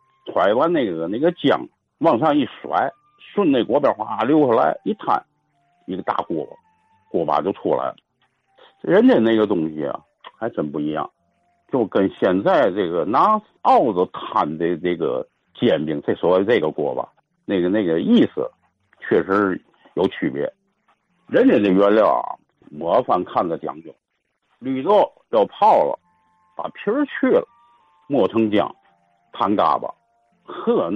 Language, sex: Chinese, male